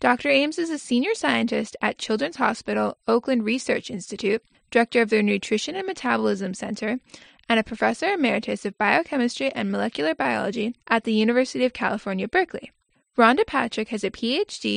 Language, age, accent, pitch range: English, 10-29, American, 215-270 Hz